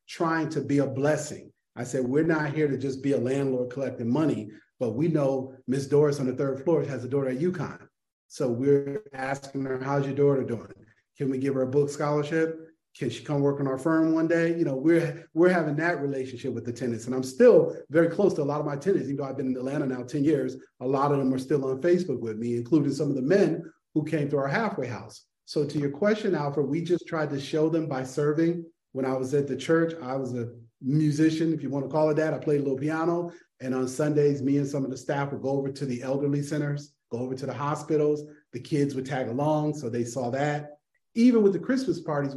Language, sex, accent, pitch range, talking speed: English, male, American, 135-160 Hz, 250 wpm